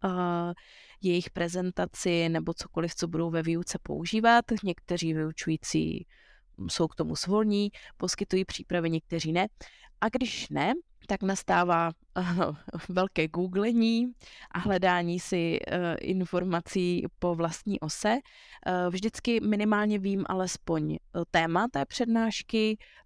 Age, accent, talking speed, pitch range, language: 20-39, native, 105 wpm, 165-190 Hz, Czech